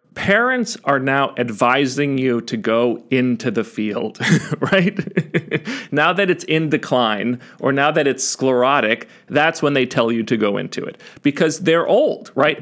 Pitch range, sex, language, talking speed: 120-160 Hz, male, English, 160 wpm